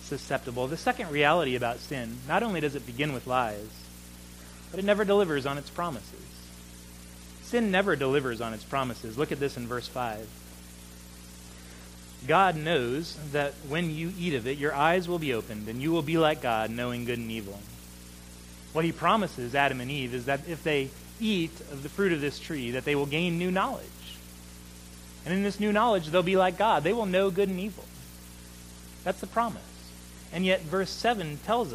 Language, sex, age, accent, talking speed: English, male, 30-49, American, 190 wpm